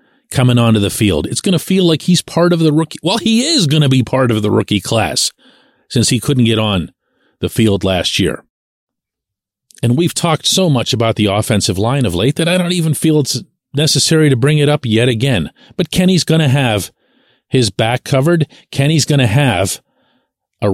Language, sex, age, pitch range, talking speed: English, male, 40-59, 110-165 Hz, 205 wpm